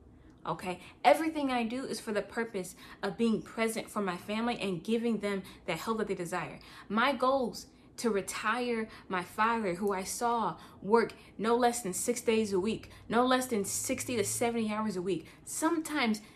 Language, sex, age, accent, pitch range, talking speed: English, female, 20-39, American, 210-265 Hz, 180 wpm